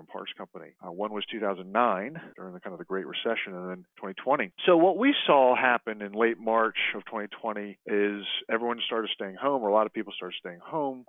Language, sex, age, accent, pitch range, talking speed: English, male, 40-59, American, 100-120 Hz, 210 wpm